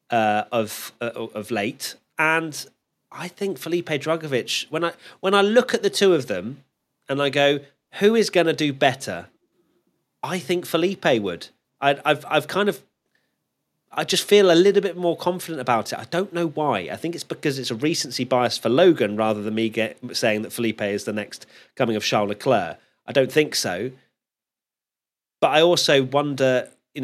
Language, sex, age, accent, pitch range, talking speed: English, male, 30-49, British, 110-155 Hz, 190 wpm